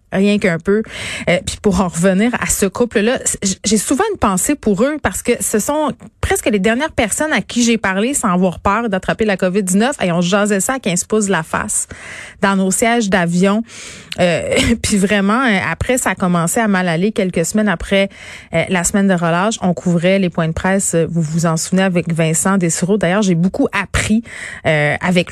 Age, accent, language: 30-49, Canadian, French